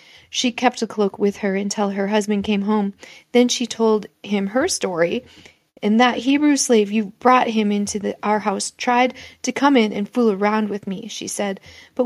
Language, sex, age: English, female, 40-59